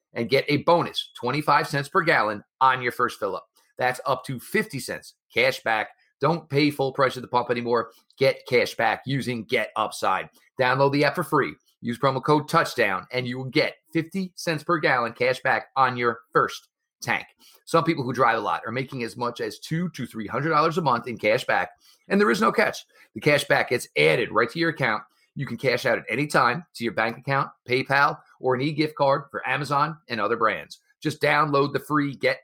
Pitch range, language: 120-155 Hz, English